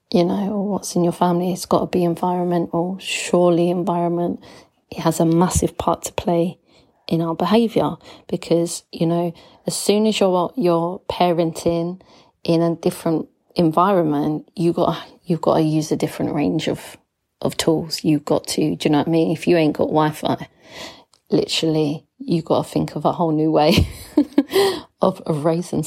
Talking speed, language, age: 175 wpm, English, 30-49